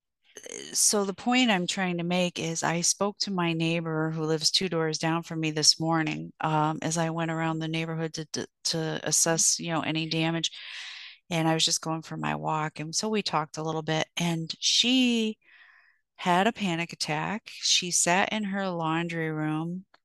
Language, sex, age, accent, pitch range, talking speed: English, female, 30-49, American, 155-180 Hz, 190 wpm